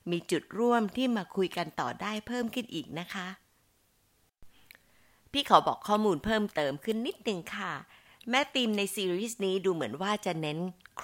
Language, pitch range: Thai, 165-225 Hz